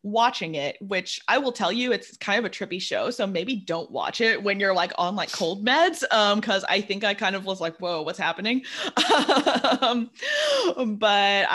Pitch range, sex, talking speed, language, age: 175-230 Hz, female, 205 wpm, English, 20-39